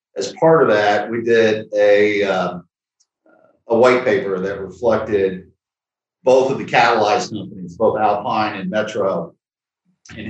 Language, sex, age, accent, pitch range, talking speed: English, male, 50-69, American, 100-115 Hz, 135 wpm